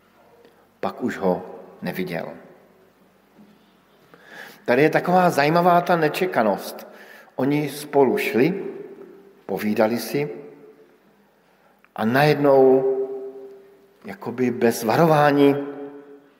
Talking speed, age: 75 wpm, 50-69